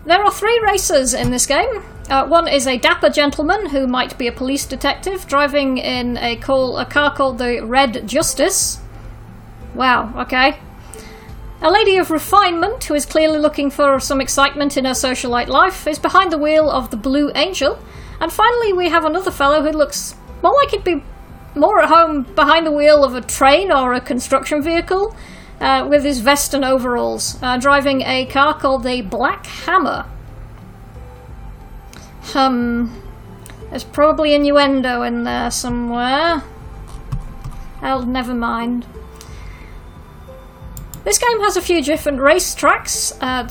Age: 40-59